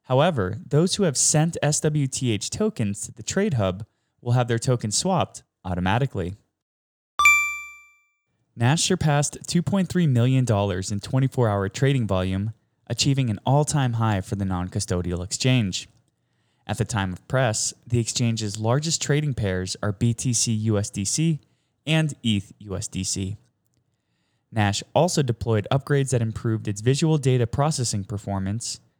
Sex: male